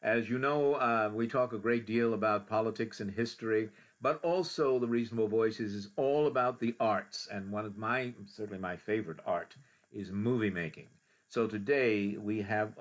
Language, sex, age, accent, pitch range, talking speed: English, male, 50-69, American, 100-120 Hz, 180 wpm